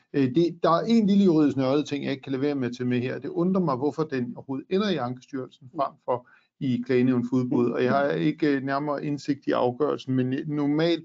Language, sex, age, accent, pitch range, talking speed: Danish, male, 50-69, native, 125-145 Hz, 235 wpm